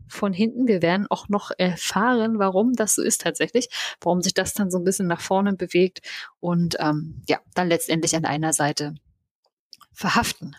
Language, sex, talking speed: German, female, 175 wpm